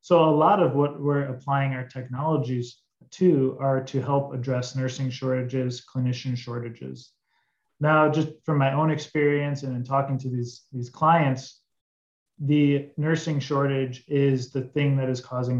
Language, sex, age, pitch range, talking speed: English, male, 30-49, 125-140 Hz, 155 wpm